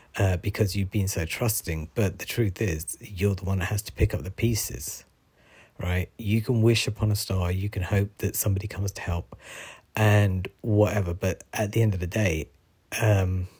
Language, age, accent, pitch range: English, 40-59, British, 90-110 Hz